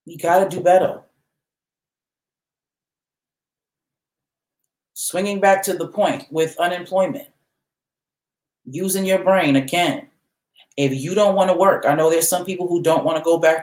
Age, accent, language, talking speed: 40-59, American, English, 145 wpm